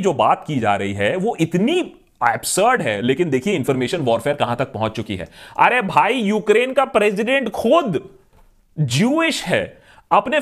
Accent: native